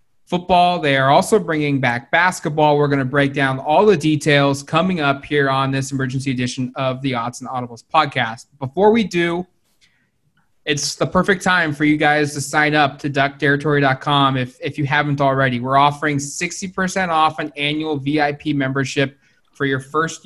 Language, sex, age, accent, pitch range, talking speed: English, male, 20-39, American, 140-160 Hz, 175 wpm